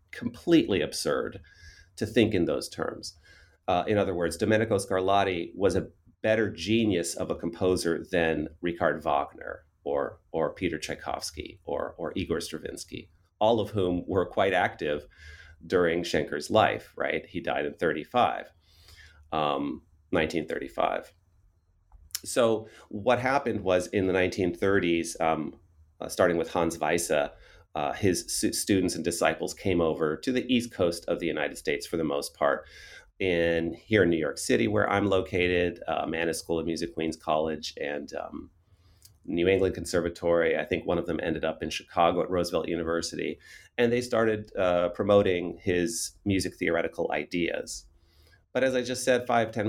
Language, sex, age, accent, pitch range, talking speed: English, male, 30-49, American, 85-105 Hz, 155 wpm